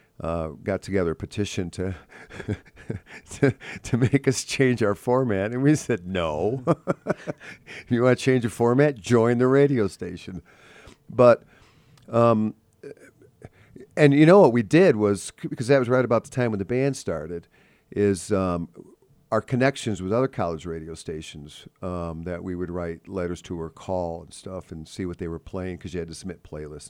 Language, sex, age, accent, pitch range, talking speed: English, male, 50-69, American, 85-115 Hz, 175 wpm